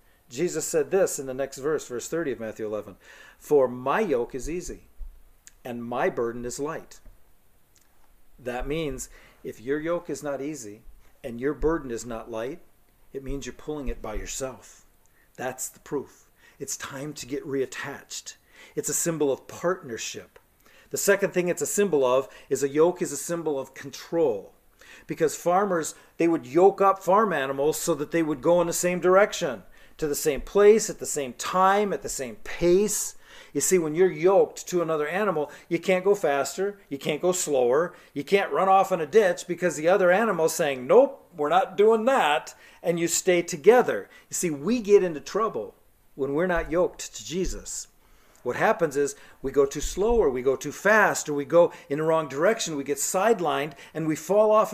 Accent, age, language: American, 40-59, English